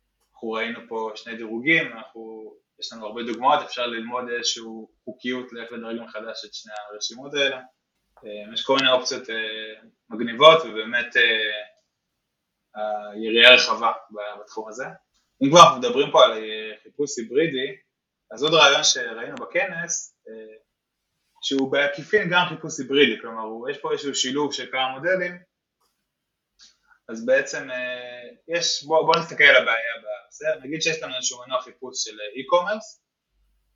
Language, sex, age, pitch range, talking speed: Hebrew, male, 20-39, 115-160 Hz, 130 wpm